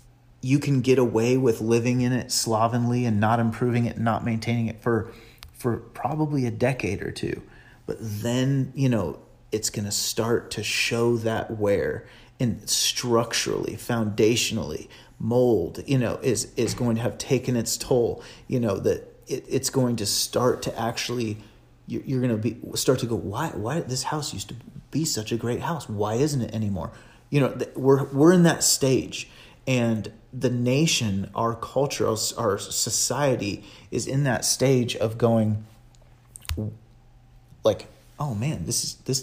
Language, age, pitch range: English, 30-49, 115-130 Hz